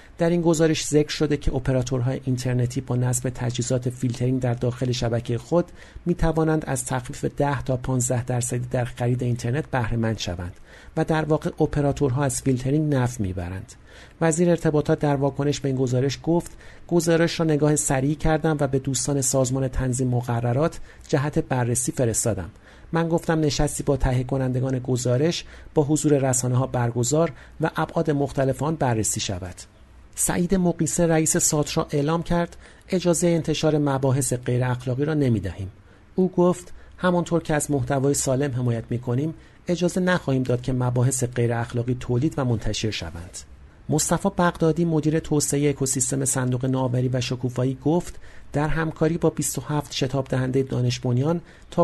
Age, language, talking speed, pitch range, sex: 50-69, Persian, 145 wpm, 125-155 Hz, male